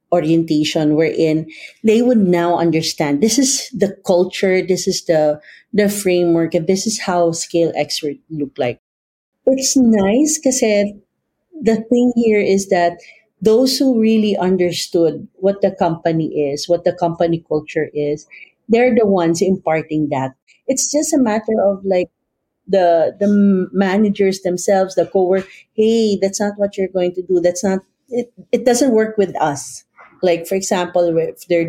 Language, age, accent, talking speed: Filipino, 40-59, native, 160 wpm